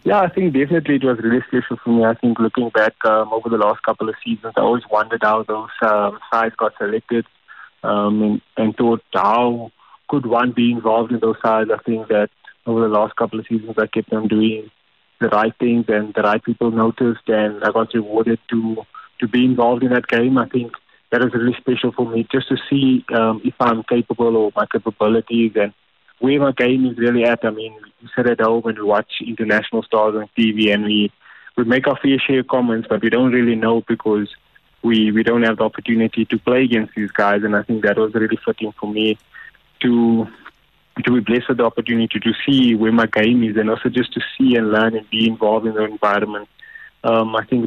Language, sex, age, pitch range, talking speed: English, male, 20-39, 110-120 Hz, 220 wpm